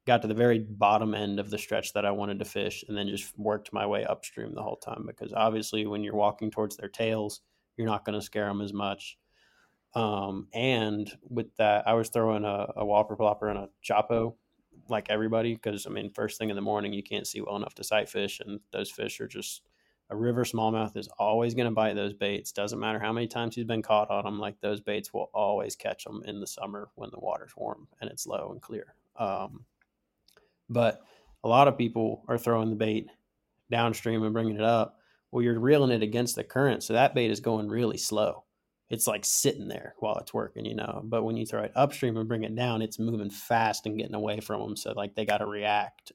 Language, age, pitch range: English, 20-39, 105-115 Hz